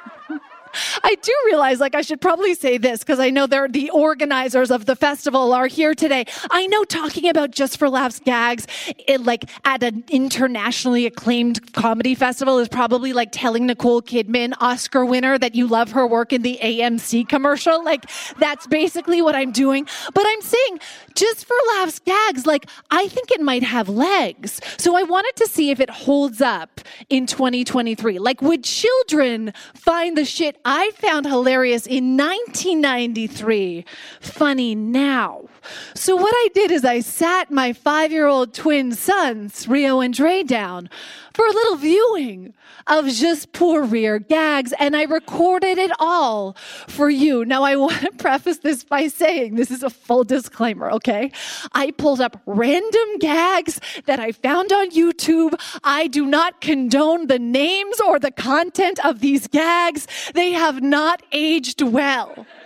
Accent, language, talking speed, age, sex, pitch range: American, English, 160 wpm, 30-49, female, 250-330 Hz